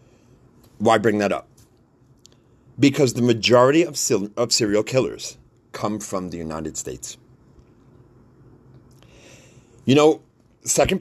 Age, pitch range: 30-49, 115-130 Hz